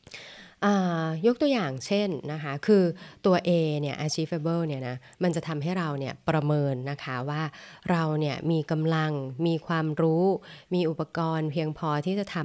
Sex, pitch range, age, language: female, 145-175 Hz, 20-39, Thai